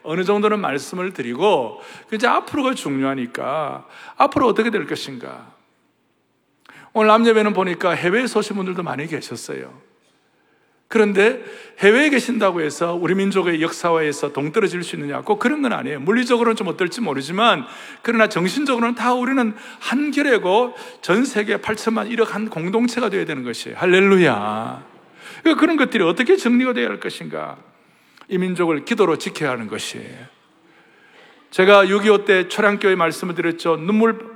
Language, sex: Korean, male